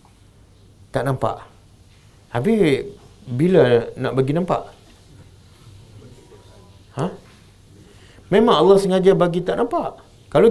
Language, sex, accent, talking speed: English, male, Indonesian, 85 wpm